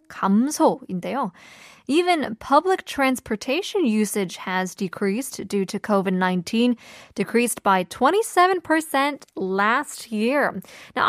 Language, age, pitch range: Korean, 20-39, 205-325 Hz